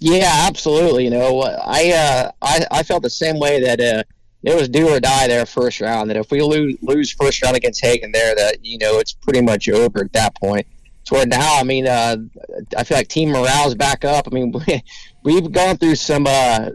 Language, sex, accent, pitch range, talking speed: English, male, American, 115-140 Hz, 220 wpm